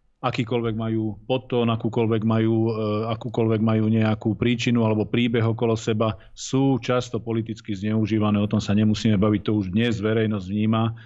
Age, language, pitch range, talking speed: 40-59, Slovak, 110-120 Hz, 140 wpm